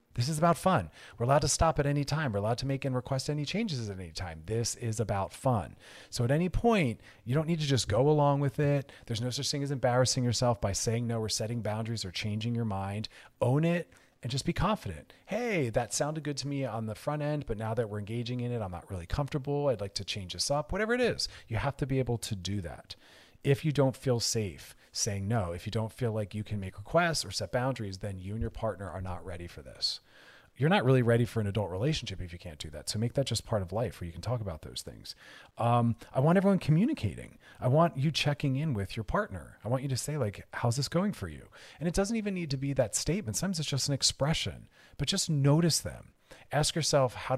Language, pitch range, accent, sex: English, 105-145 Hz, American, male